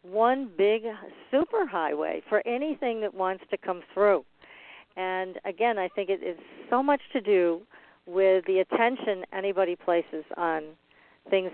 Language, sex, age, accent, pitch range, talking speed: English, female, 50-69, American, 170-215 Hz, 145 wpm